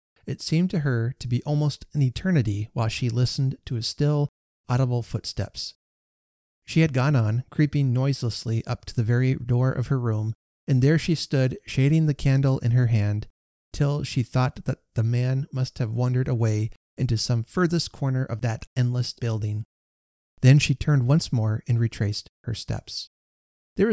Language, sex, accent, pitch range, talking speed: English, male, American, 110-140 Hz, 175 wpm